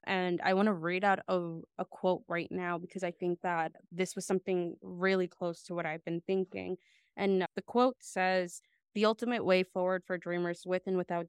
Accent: American